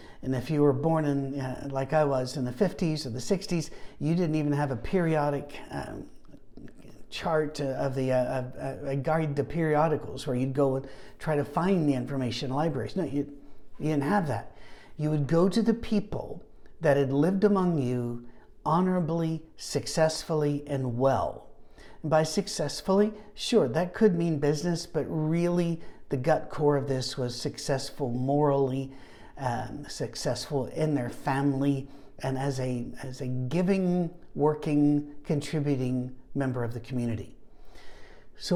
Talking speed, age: 150 wpm, 50-69